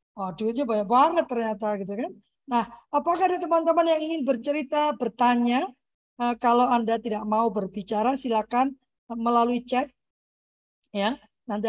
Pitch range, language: 220-290 Hz, Indonesian